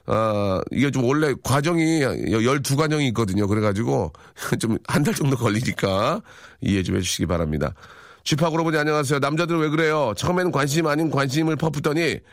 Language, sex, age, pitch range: Korean, male, 40-59, 120-165 Hz